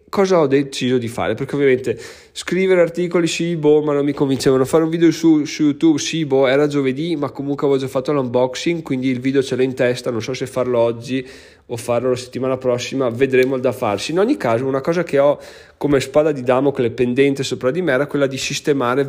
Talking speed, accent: 225 wpm, native